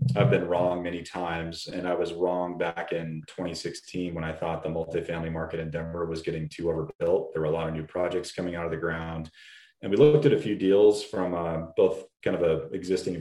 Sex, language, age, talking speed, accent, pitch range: male, English, 30-49, 225 wpm, American, 85-100 Hz